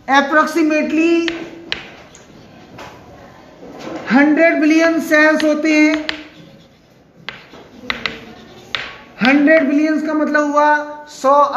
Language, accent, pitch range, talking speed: Hindi, native, 260-310 Hz, 60 wpm